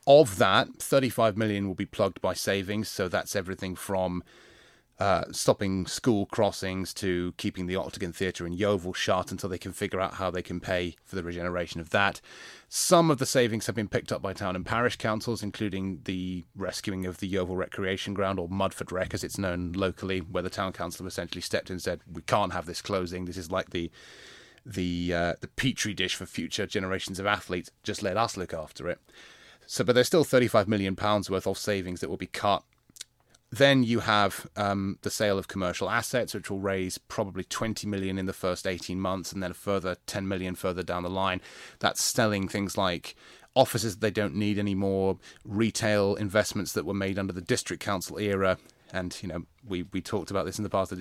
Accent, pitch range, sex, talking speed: British, 90-105 Hz, male, 210 wpm